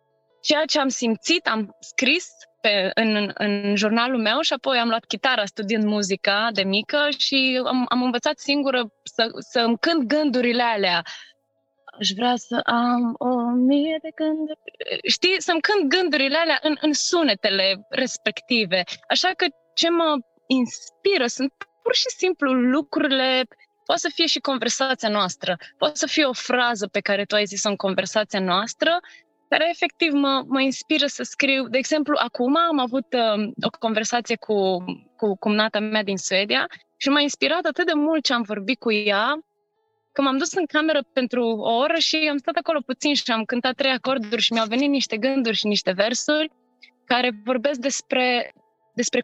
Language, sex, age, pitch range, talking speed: Romanian, female, 20-39, 220-300 Hz, 170 wpm